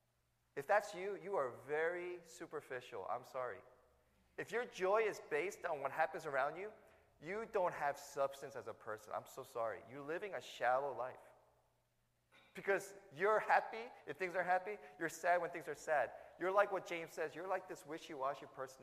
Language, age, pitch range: English, 20-39, 145-205 Hz